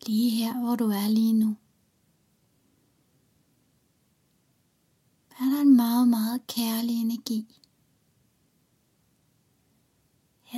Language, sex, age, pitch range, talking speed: Danish, female, 30-49, 225-255 Hz, 85 wpm